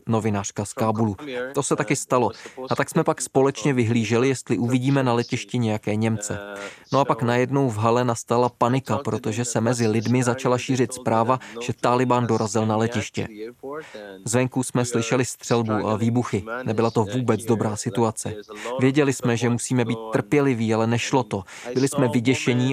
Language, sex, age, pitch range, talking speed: Czech, male, 20-39, 110-130 Hz, 165 wpm